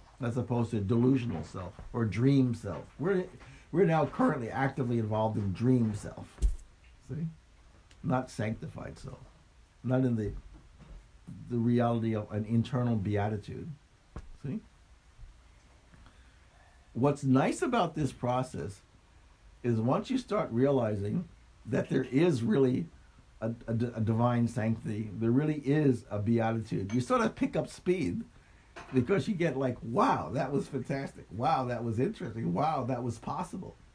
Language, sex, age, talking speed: English, male, 60-79, 135 wpm